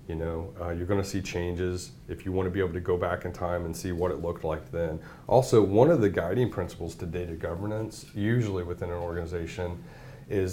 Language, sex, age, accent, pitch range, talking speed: English, male, 30-49, American, 90-115 Hz, 230 wpm